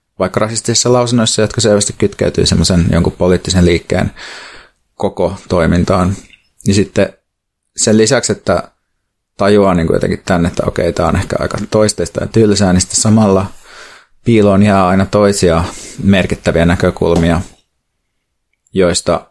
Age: 30-49